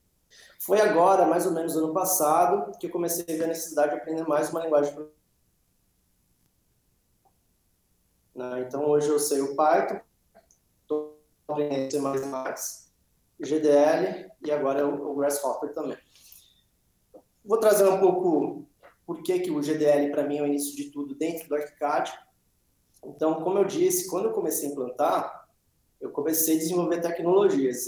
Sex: male